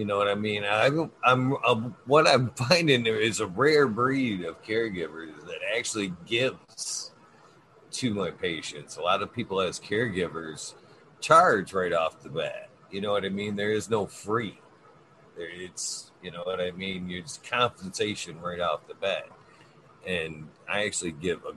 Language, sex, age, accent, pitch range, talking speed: English, male, 40-59, American, 100-135 Hz, 170 wpm